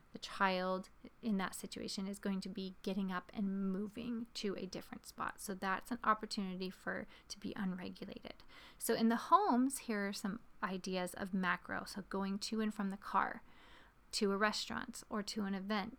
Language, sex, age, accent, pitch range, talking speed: English, female, 30-49, American, 195-225 Hz, 185 wpm